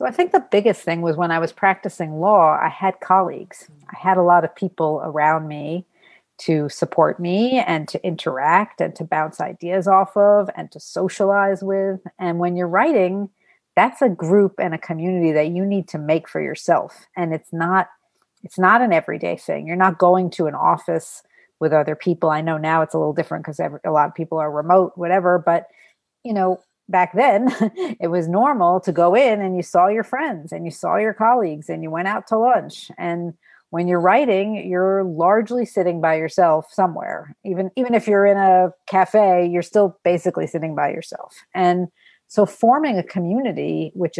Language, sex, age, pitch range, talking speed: English, female, 50-69, 165-190 Hz, 195 wpm